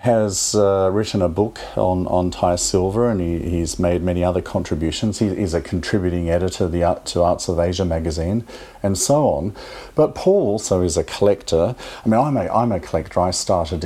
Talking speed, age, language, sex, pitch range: 205 wpm, 40-59, English, male, 90-115 Hz